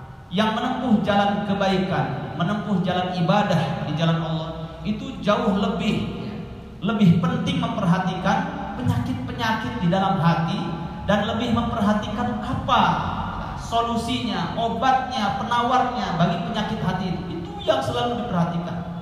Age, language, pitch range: 40-59, Indonesian, 135-180 Hz